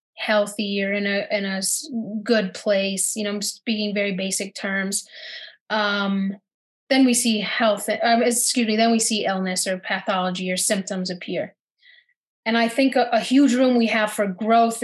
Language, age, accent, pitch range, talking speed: English, 30-49, American, 200-240 Hz, 175 wpm